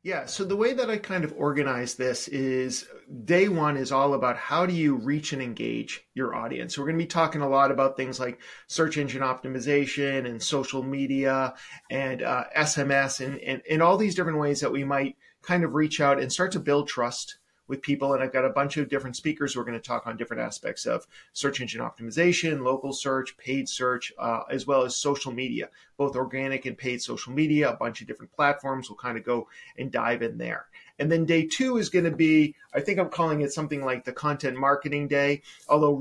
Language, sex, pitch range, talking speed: English, male, 130-155 Hz, 225 wpm